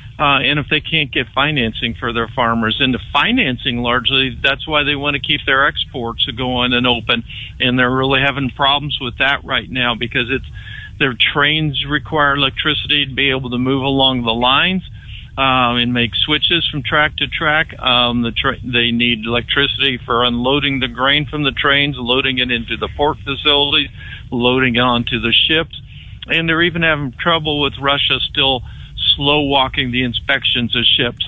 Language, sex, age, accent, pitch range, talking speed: English, male, 50-69, American, 120-140 Hz, 180 wpm